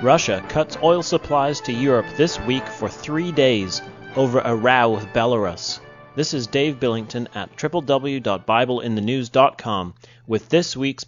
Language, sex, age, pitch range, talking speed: English, male, 30-49, 115-135 Hz, 135 wpm